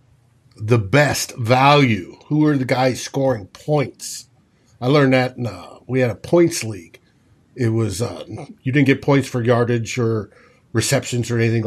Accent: American